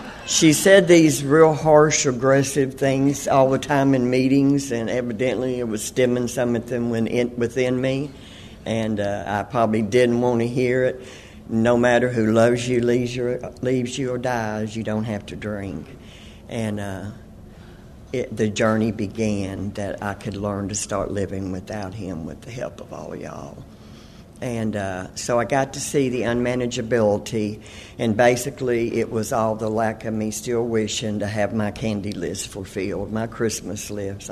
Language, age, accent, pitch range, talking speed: English, 50-69, American, 105-120 Hz, 165 wpm